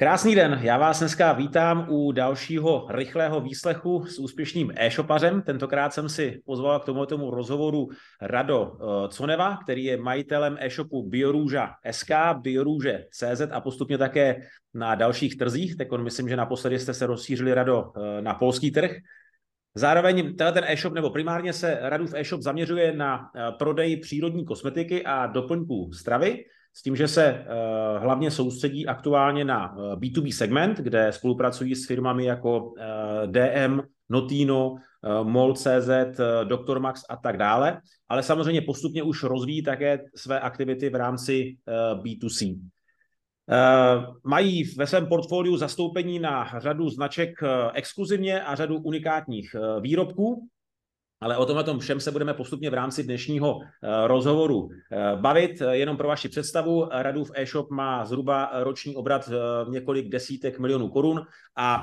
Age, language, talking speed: 30-49, Czech, 135 wpm